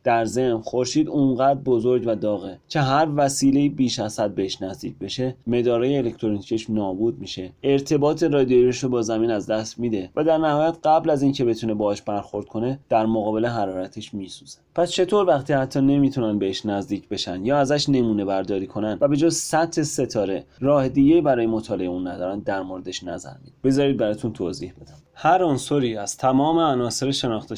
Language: Persian